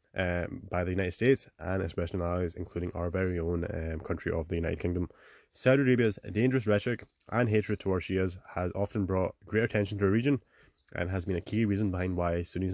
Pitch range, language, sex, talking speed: 90-105 Hz, English, male, 205 wpm